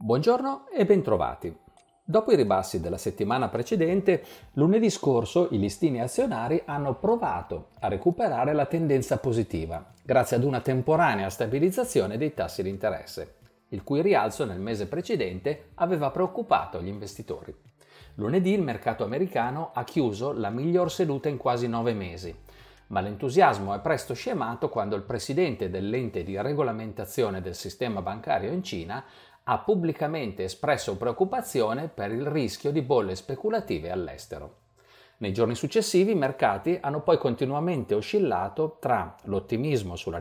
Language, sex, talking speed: Italian, male, 135 wpm